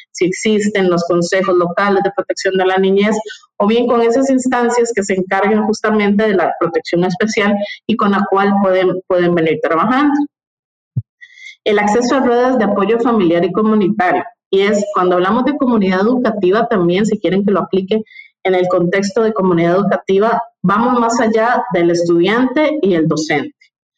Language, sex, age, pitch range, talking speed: Spanish, female, 30-49, 180-235 Hz, 170 wpm